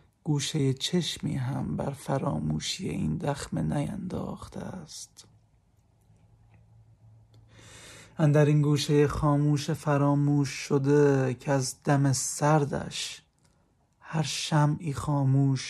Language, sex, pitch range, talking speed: English, male, 125-145 Hz, 90 wpm